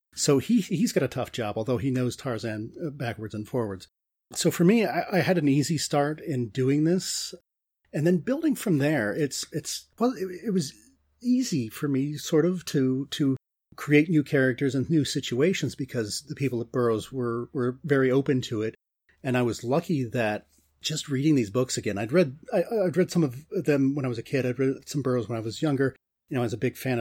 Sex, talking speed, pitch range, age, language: male, 220 wpm, 120-155 Hz, 40-59, English